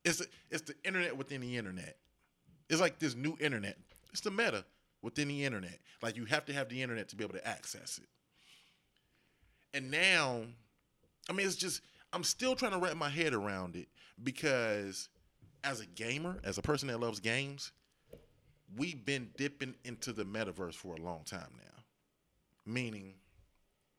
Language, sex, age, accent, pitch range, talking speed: English, male, 30-49, American, 95-135 Hz, 170 wpm